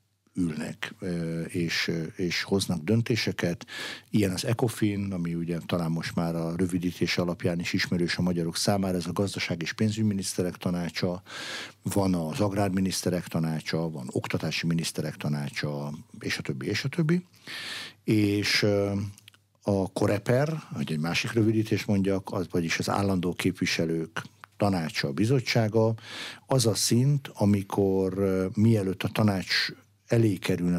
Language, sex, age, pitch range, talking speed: Hungarian, male, 60-79, 90-110 Hz, 125 wpm